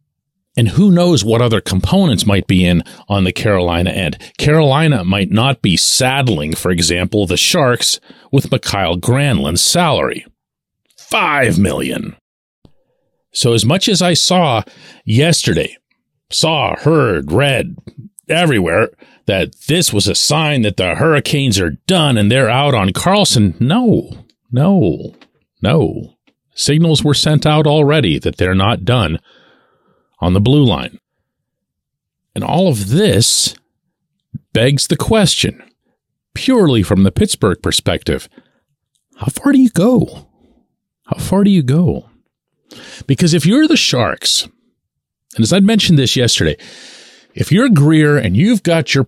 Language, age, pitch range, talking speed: English, 40-59, 105-165 Hz, 135 wpm